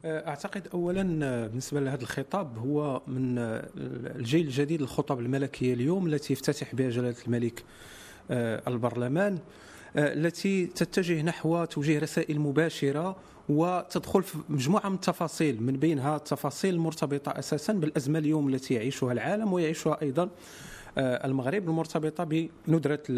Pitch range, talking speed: 140-180 Hz, 115 wpm